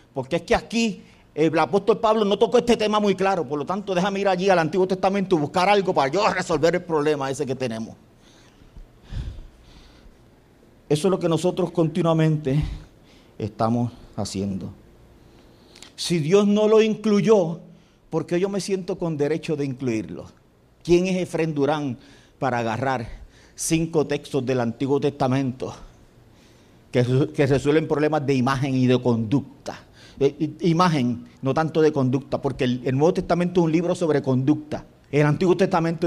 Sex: male